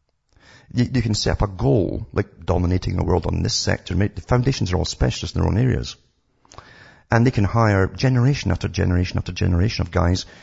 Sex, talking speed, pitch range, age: male, 190 wpm, 85-110 Hz, 50-69